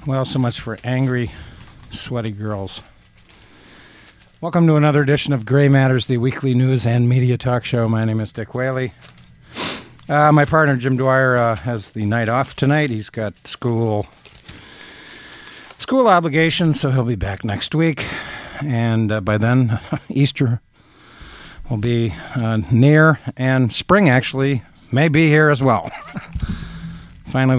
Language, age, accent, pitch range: English, 50-69, American, 110-140 Hz